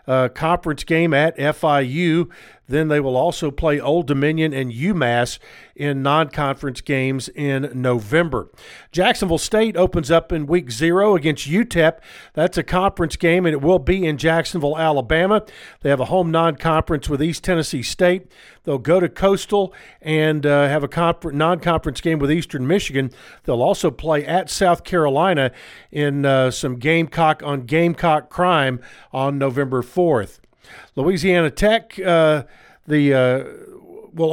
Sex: male